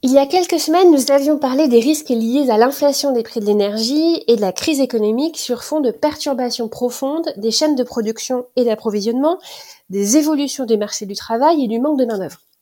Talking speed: 210 wpm